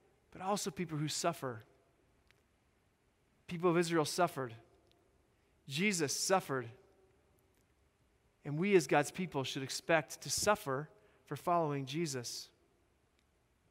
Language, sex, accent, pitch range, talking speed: English, male, American, 150-205 Hz, 100 wpm